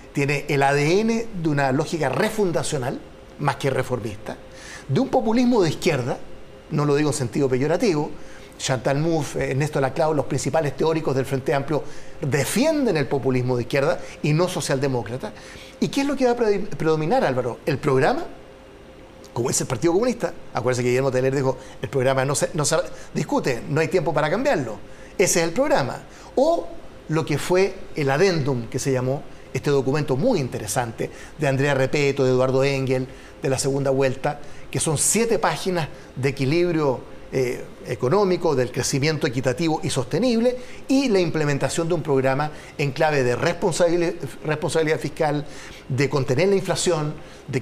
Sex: male